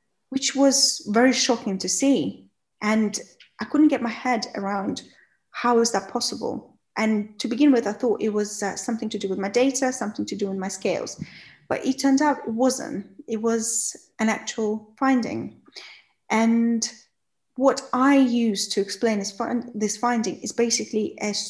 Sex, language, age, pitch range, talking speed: female, English, 30-49, 210-255 Hz, 170 wpm